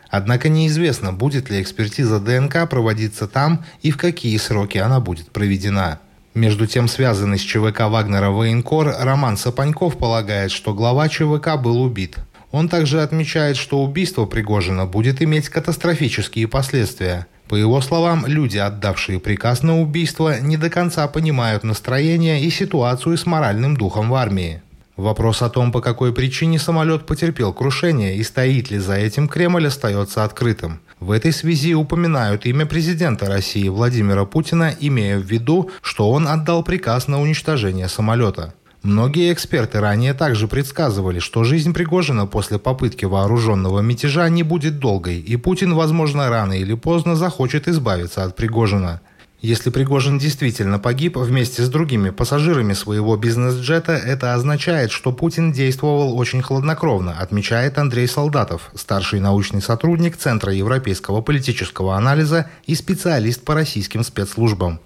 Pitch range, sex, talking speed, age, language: 105-155 Hz, male, 140 wpm, 30-49, Russian